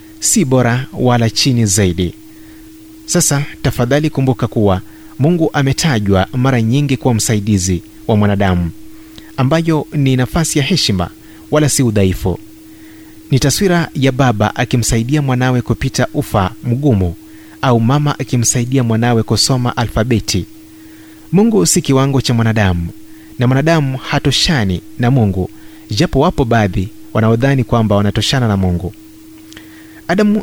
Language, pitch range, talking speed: Swahili, 105-145 Hz, 115 wpm